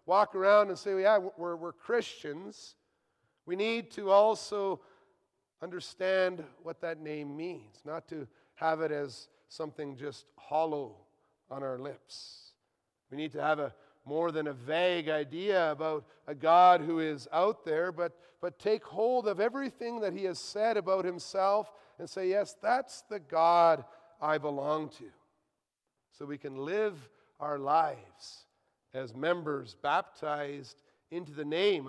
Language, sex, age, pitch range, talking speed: English, male, 40-59, 150-190 Hz, 145 wpm